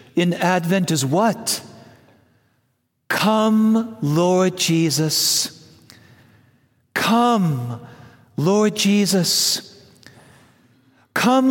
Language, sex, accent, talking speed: English, male, American, 55 wpm